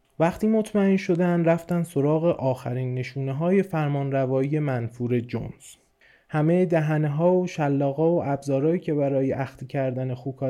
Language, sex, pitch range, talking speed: Persian, male, 125-165 Hz, 135 wpm